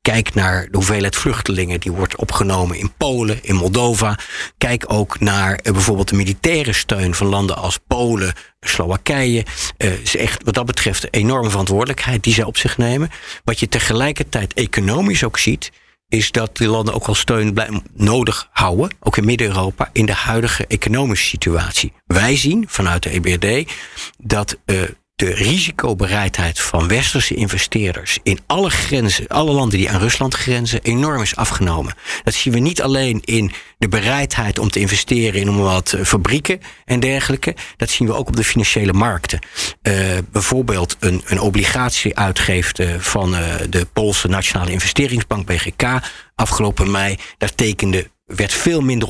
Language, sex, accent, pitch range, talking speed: Dutch, male, Dutch, 95-115 Hz, 160 wpm